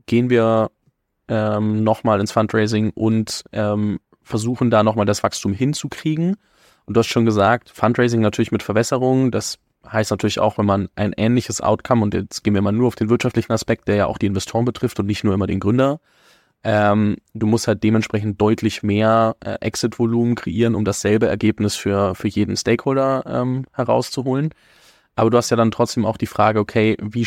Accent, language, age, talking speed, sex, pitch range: German, German, 20-39, 185 wpm, male, 105-120 Hz